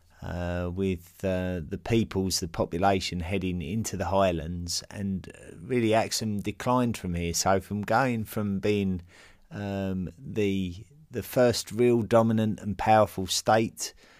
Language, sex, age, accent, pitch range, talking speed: English, male, 30-49, British, 90-105 Hz, 130 wpm